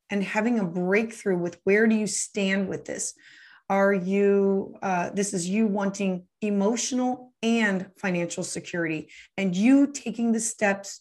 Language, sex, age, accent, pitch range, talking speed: English, female, 30-49, American, 190-230 Hz, 145 wpm